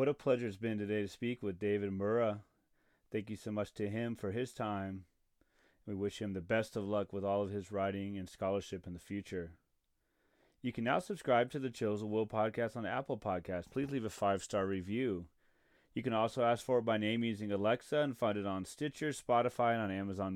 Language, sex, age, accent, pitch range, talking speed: English, male, 30-49, American, 100-130 Hz, 220 wpm